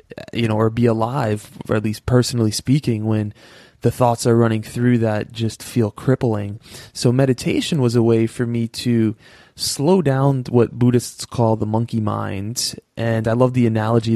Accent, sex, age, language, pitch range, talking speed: American, male, 20-39, English, 110-135 Hz, 175 wpm